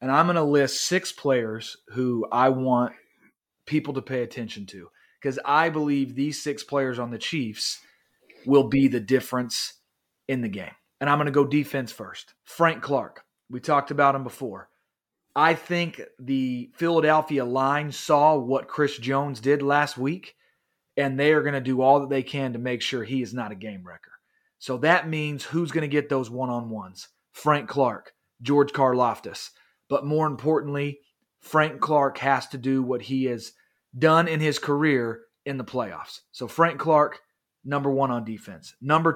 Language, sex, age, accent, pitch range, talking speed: English, male, 30-49, American, 130-155 Hz, 175 wpm